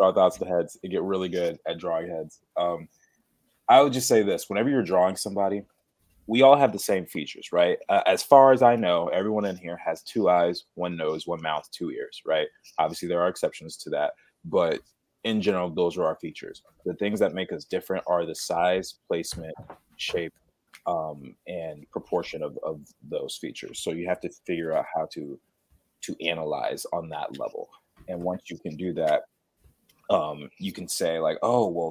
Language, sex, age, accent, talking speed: English, male, 30-49, American, 195 wpm